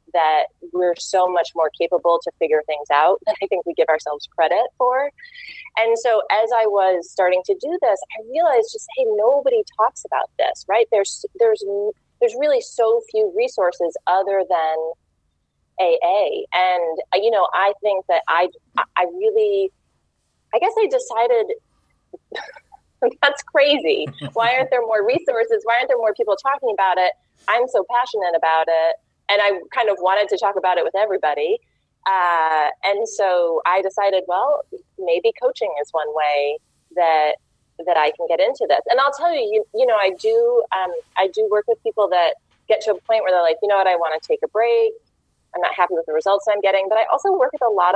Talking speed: 195 wpm